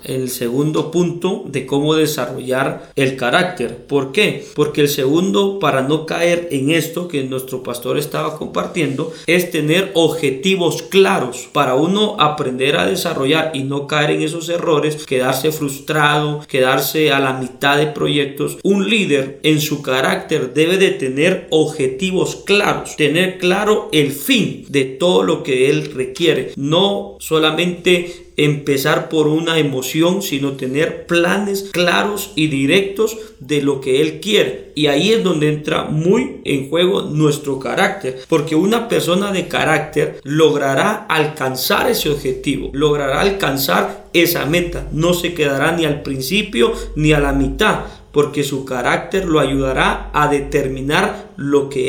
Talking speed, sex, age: 145 wpm, male, 40-59